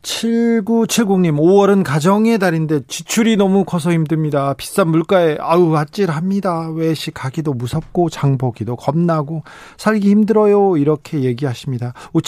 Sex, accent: male, native